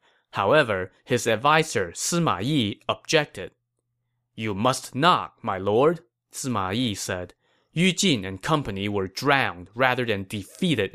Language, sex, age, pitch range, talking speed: English, male, 20-39, 105-145 Hz, 125 wpm